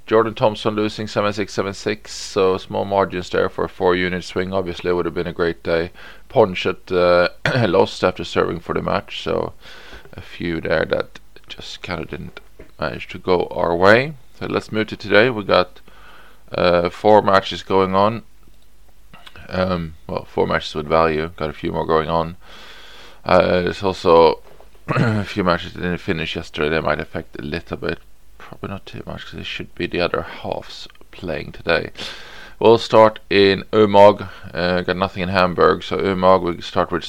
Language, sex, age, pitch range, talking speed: English, male, 20-39, 85-100 Hz, 190 wpm